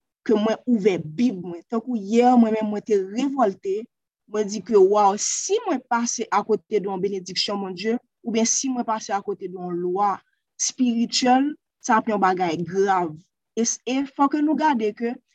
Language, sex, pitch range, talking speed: French, female, 200-255 Hz, 170 wpm